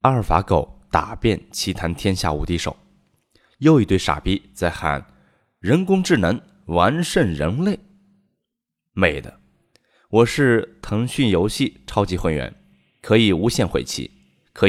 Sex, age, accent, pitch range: male, 20-39, native, 85-140 Hz